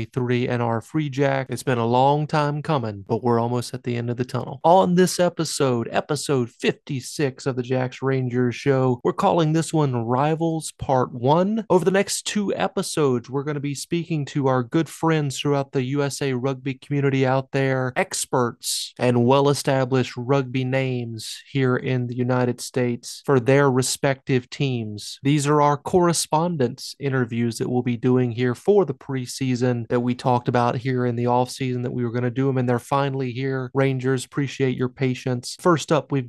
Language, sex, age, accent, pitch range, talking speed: English, male, 30-49, American, 125-145 Hz, 185 wpm